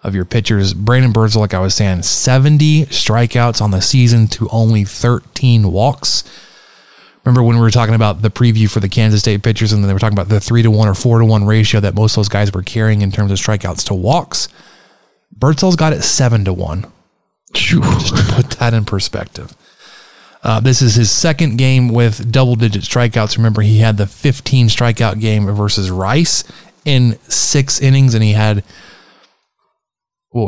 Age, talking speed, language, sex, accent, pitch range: 20-39, 195 wpm, English, male, American, 105-130 Hz